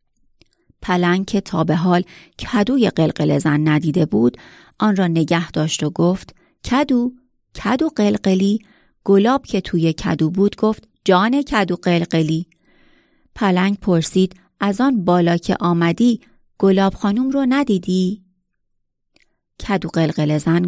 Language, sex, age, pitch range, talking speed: Persian, female, 30-49, 170-235 Hz, 115 wpm